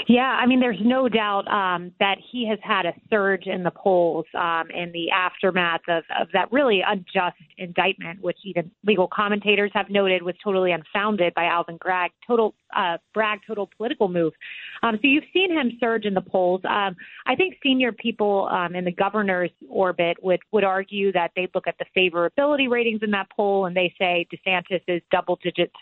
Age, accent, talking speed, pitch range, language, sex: 30-49, American, 195 wpm, 180-220 Hz, English, female